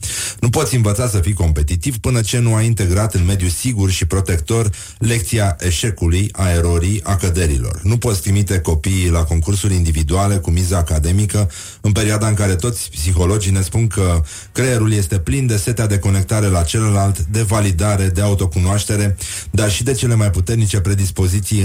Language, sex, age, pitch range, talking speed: Romanian, male, 30-49, 90-110 Hz, 170 wpm